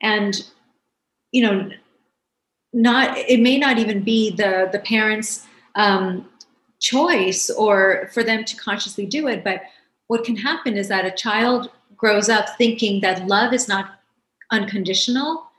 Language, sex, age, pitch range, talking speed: English, female, 30-49, 200-245 Hz, 140 wpm